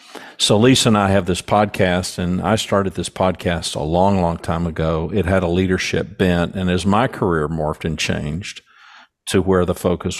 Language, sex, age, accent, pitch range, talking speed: English, male, 50-69, American, 85-100 Hz, 195 wpm